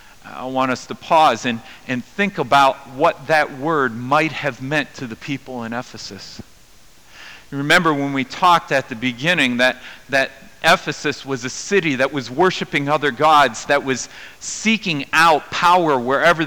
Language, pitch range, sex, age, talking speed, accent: English, 125-155 Hz, male, 50-69, 160 wpm, American